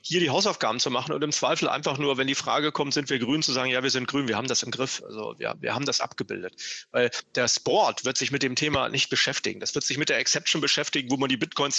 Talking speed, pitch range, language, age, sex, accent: 275 wpm, 135-170 Hz, German, 40-59, male, German